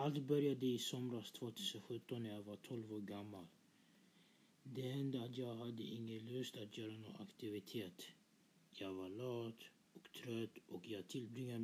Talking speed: 155 wpm